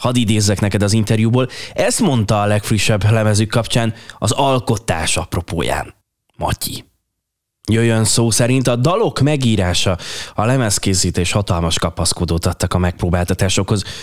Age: 20-39